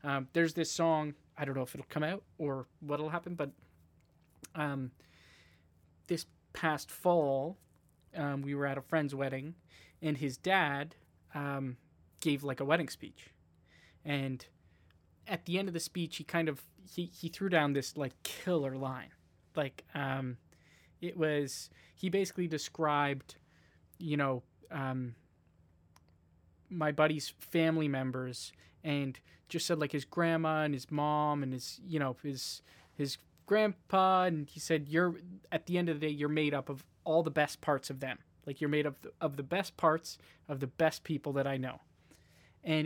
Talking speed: 170 wpm